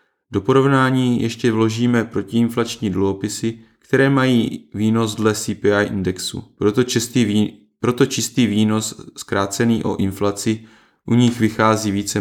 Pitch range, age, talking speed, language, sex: 105-125 Hz, 20-39, 125 wpm, Czech, male